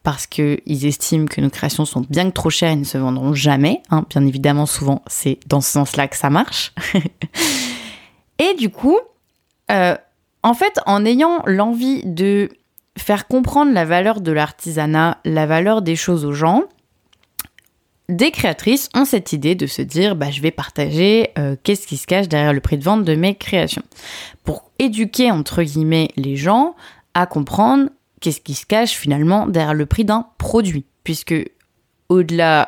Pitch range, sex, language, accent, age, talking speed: 150-195 Hz, female, French, French, 20-39, 175 wpm